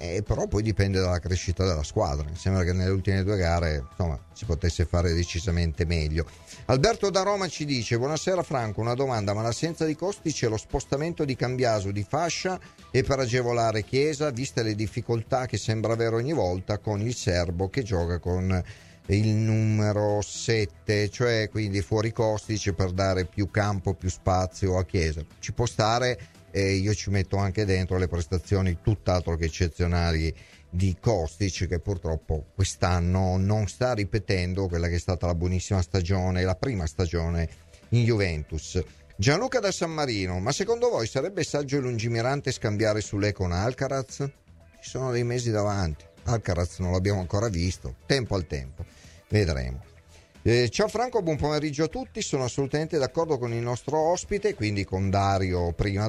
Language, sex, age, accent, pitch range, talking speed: Italian, male, 40-59, native, 90-125 Hz, 165 wpm